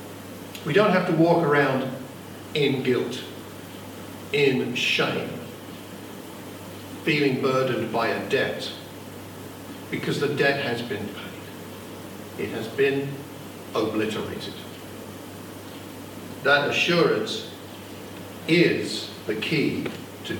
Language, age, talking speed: English, 50-69, 90 wpm